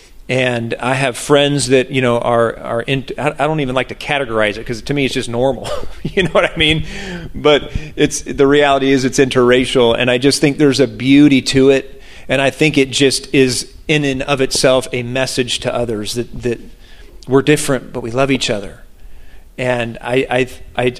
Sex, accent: male, American